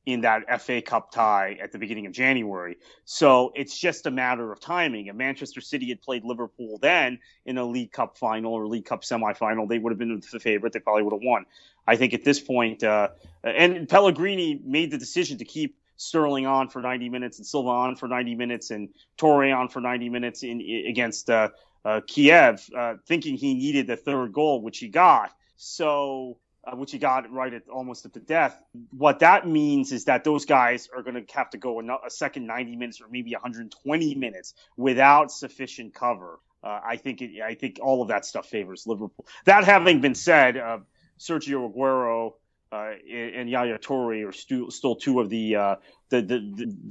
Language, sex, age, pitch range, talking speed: English, male, 30-49, 115-140 Hz, 200 wpm